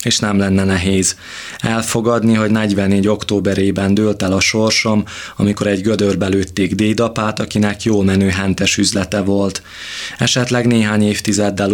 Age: 20-39